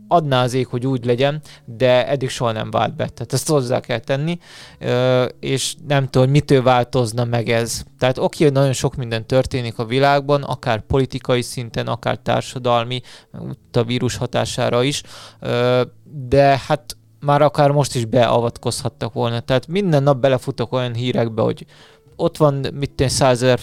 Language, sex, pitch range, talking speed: Hungarian, male, 120-140 Hz, 155 wpm